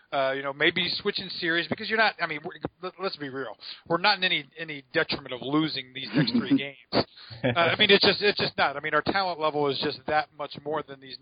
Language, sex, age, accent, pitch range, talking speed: English, male, 40-59, American, 150-200 Hz, 245 wpm